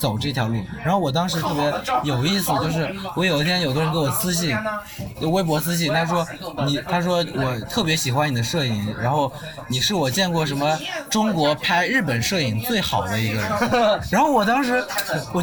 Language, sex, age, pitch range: Chinese, male, 20-39, 135-185 Hz